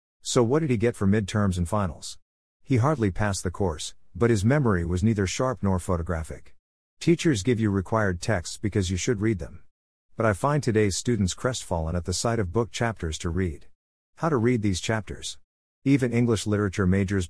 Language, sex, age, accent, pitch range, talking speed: English, male, 50-69, American, 90-115 Hz, 190 wpm